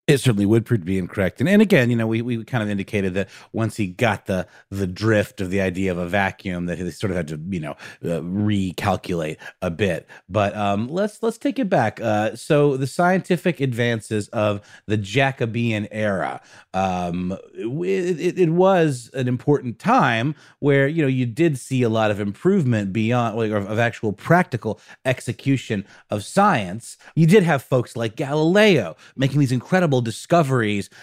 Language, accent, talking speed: English, American, 180 wpm